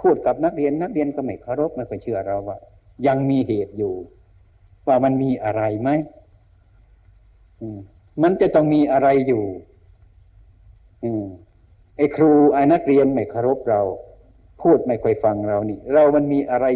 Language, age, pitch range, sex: Thai, 60-79, 100-135 Hz, male